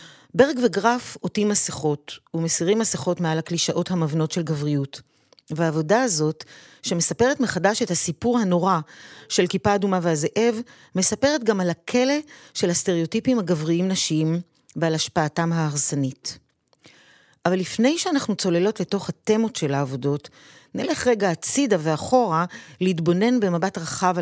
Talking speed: 120 wpm